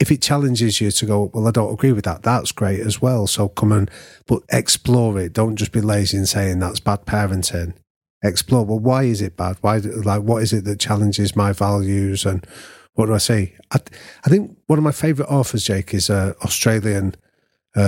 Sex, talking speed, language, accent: male, 220 wpm, English, British